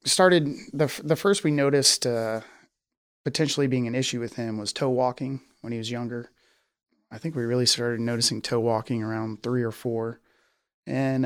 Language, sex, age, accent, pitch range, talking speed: English, male, 30-49, American, 115-135 Hz, 175 wpm